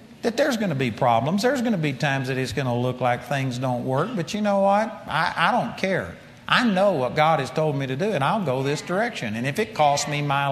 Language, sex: English, male